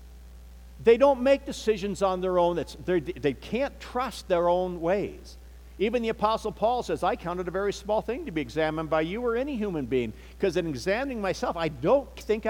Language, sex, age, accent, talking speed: English, male, 60-79, American, 190 wpm